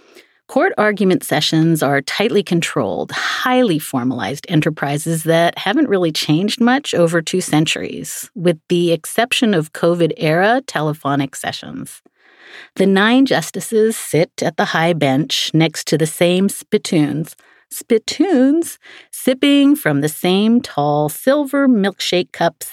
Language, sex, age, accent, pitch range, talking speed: English, female, 40-59, American, 155-215 Hz, 120 wpm